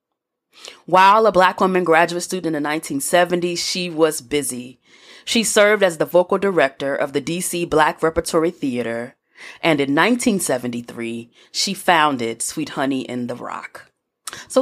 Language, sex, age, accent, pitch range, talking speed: English, female, 30-49, American, 145-200 Hz, 145 wpm